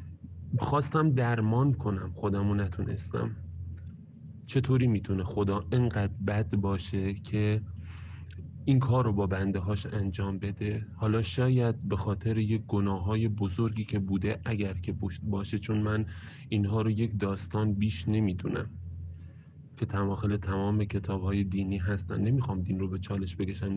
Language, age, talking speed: English, 30-49, 135 wpm